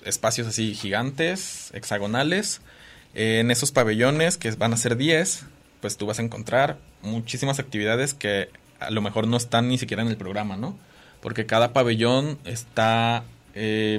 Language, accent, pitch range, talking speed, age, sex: Spanish, Mexican, 105-125 Hz, 160 wpm, 20-39, male